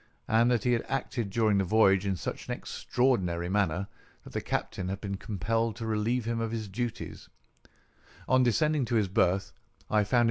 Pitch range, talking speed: 95-120 Hz, 185 wpm